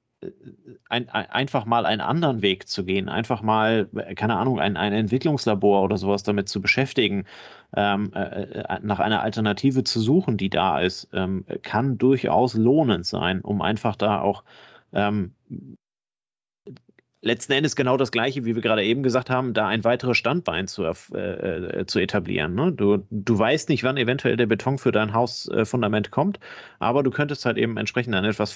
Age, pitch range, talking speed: 30-49, 105-125 Hz, 165 wpm